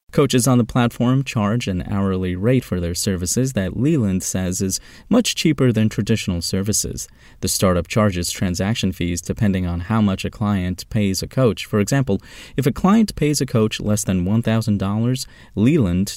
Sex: male